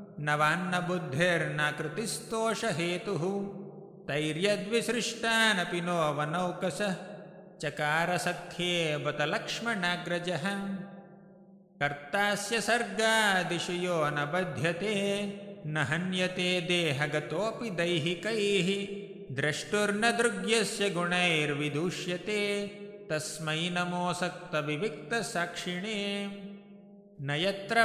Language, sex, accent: English, male, Indian